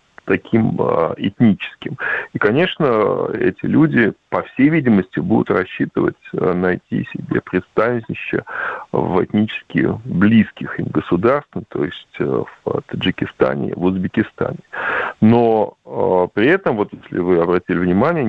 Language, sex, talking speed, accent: Russian, male, 120 wpm, native